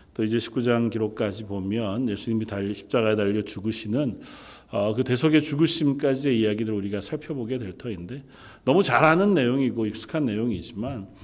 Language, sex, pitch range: Korean, male, 100-135 Hz